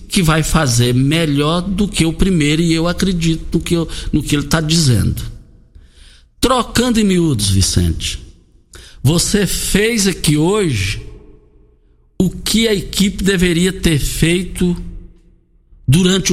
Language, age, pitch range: Portuguese, 60-79, 115-190 Hz